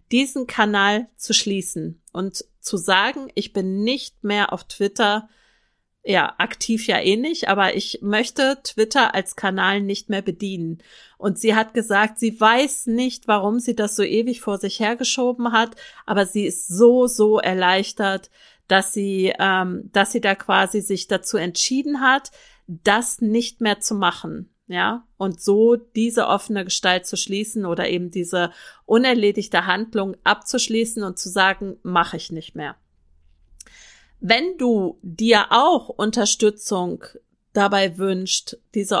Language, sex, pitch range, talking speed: German, female, 195-230 Hz, 145 wpm